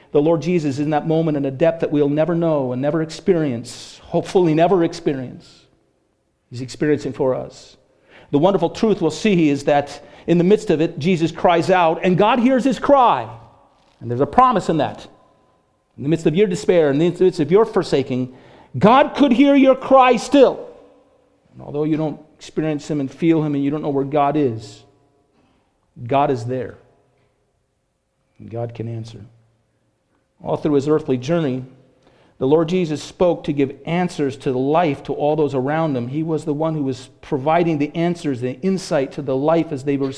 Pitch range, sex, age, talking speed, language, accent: 140-195 Hz, male, 40-59, 190 wpm, English, American